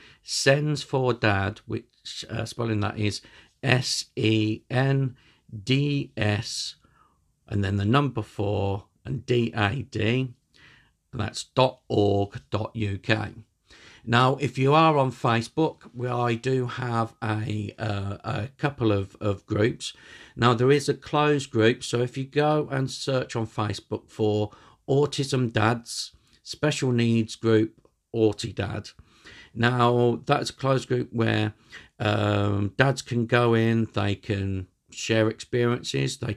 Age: 50-69